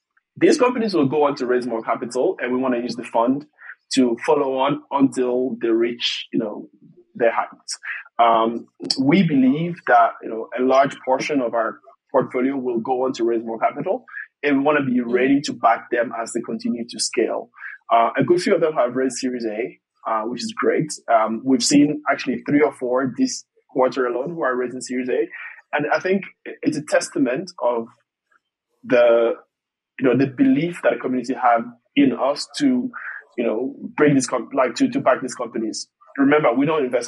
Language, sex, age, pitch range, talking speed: English, male, 20-39, 120-150 Hz, 190 wpm